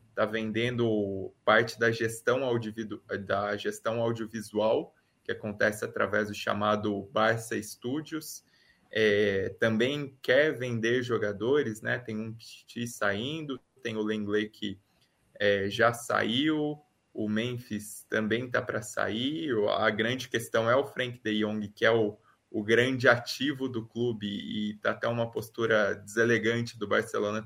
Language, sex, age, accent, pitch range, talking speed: Portuguese, male, 20-39, Brazilian, 105-120 Hz, 135 wpm